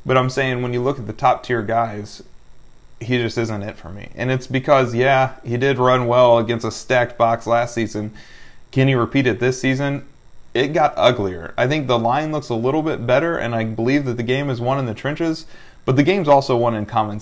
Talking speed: 230 wpm